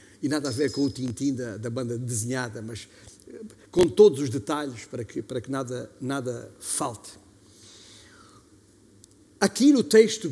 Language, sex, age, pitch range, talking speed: Portuguese, male, 50-69, 120-190 Hz, 140 wpm